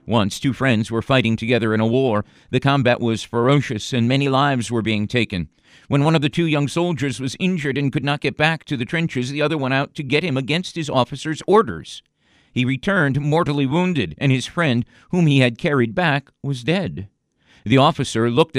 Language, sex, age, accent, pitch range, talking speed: English, male, 50-69, American, 120-155 Hz, 205 wpm